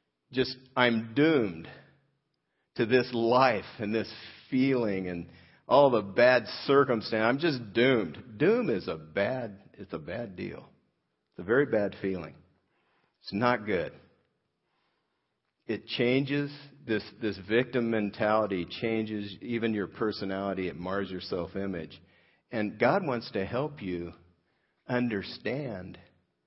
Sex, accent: male, American